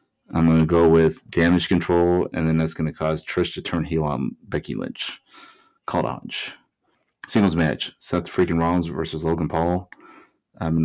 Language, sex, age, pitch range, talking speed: English, male, 30-49, 80-85 Hz, 185 wpm